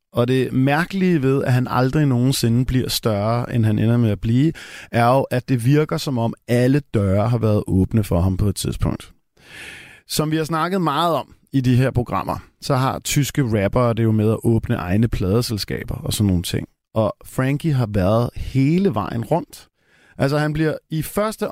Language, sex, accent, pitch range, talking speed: Danish, male, native, 115-145 Hz, 195 wpm